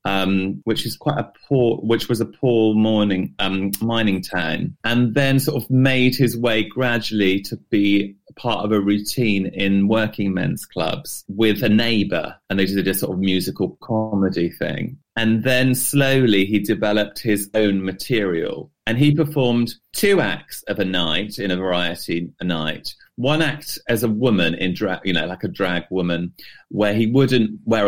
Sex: male